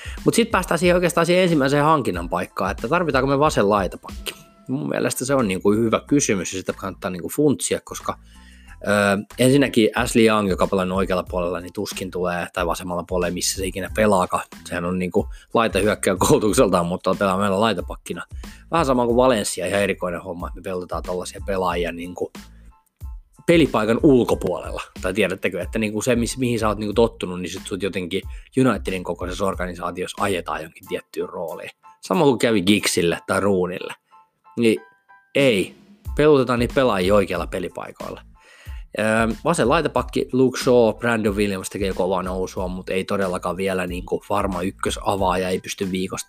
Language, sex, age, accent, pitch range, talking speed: Finnish, male, 20-39, native, 90-120 Hz, 165 wpm